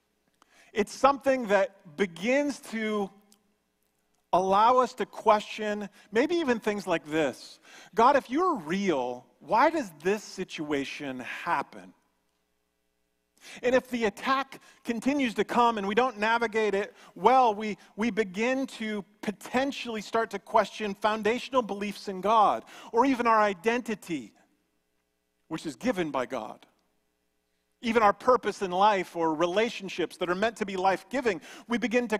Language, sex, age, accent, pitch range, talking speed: English, male, 40-59, American, 160-235 Hz, 135 wpm